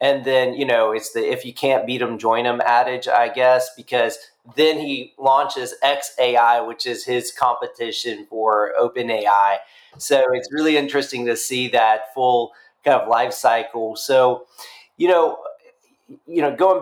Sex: male